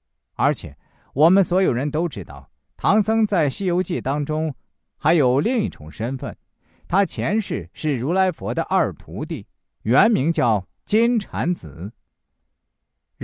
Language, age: Chinese, 50-69